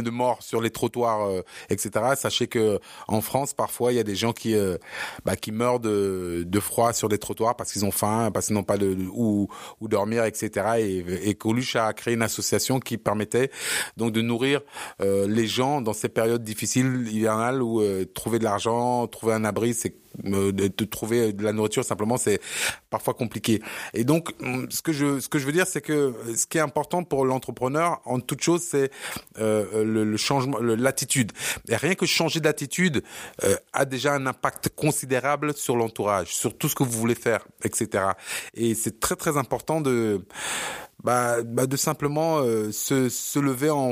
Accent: French